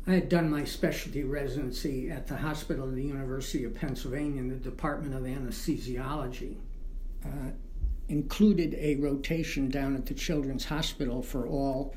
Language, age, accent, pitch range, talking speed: English, 60-79, American, 135-155 Hz, 150 wpm